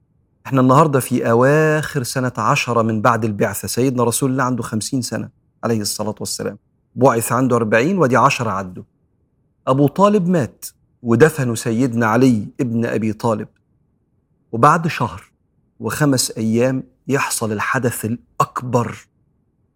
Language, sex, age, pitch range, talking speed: Arabic, male, 40-59, 110-140 Hz, 120 wpm